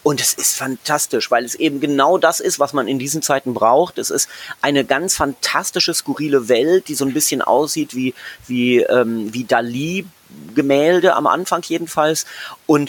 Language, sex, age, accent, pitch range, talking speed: German, male, 30-49, German, 135-180 Hz, 170 wpm